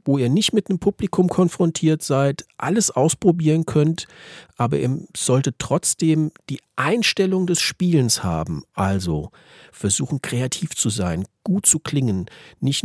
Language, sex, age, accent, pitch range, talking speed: German, male, 50-69, German, 115-170 Hz, 135 wpm